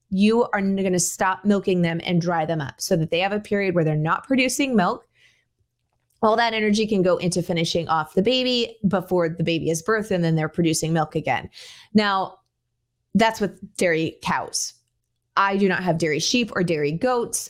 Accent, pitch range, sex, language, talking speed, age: American, 165-210 Hz, female, English, 195 wpm, 20-39